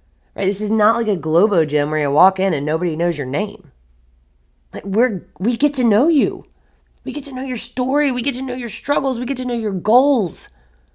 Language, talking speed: English, 235 wpm